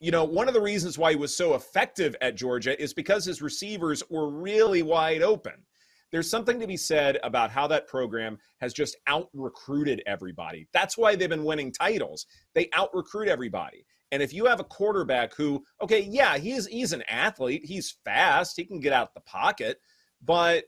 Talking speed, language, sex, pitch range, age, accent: 190 wpm, English, male, 130-180 Hz, 30-49, American